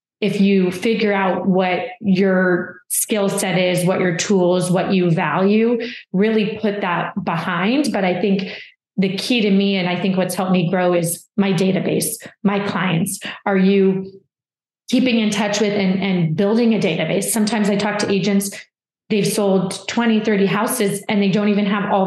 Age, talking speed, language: 30-49, 175 wpm, English